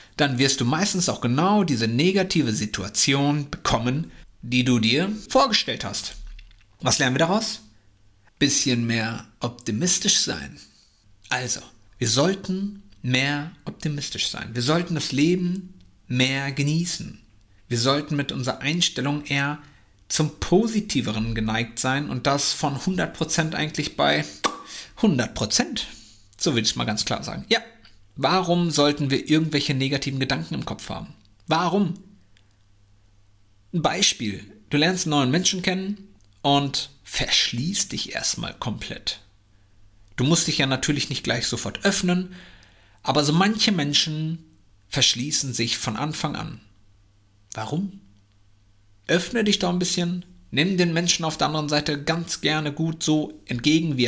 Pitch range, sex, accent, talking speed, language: 105-165 Hz, male, German, 135 wpm, German